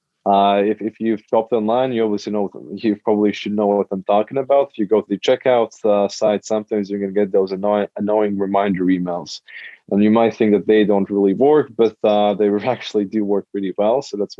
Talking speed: 225 wpm